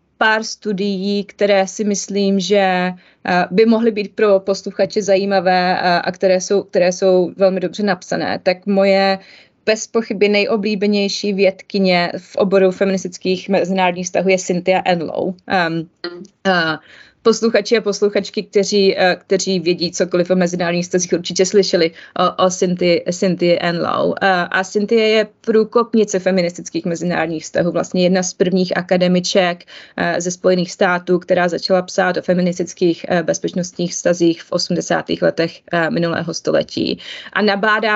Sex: female